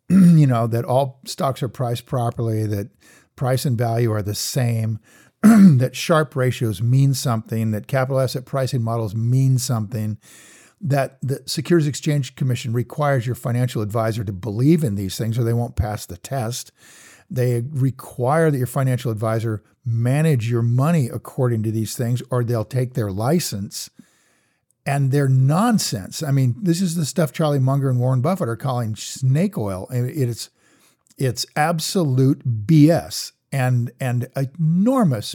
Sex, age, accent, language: male, 50-69, American, English